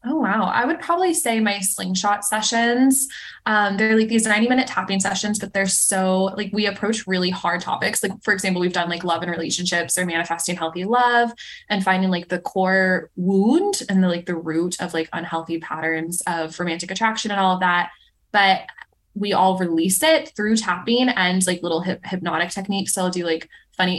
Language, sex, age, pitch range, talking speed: English, female, 20-39, 175-220 Hz, 195 wpm